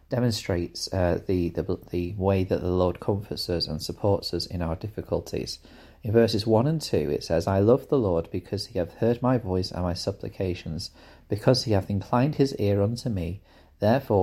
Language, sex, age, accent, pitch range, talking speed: English, male, 30-49, British, 85-105 Hz, 195 wpm